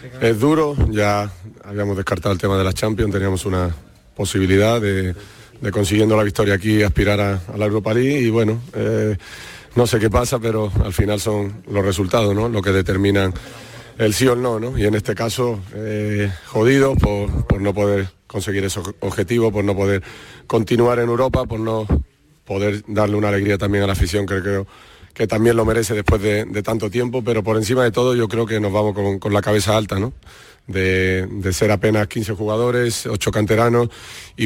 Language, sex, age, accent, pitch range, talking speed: Spanish, male, 40-59, Spanish, 100-115 Hz, 195 wpm